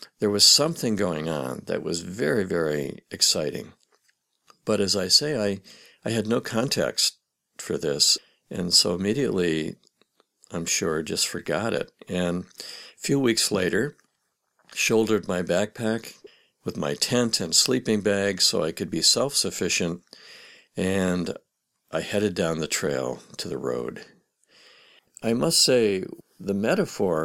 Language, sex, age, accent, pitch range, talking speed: English, male, 60-79, American, 85-110 Hz, 135 wpm